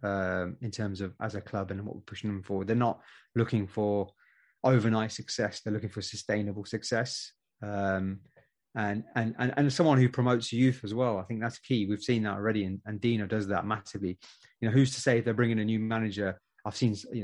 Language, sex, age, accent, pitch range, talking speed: English, male, 30-49, British, 100-120 Hz, 220 wpm